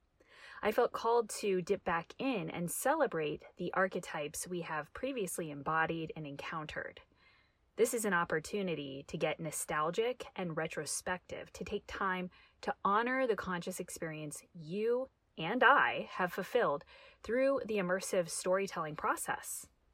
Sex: female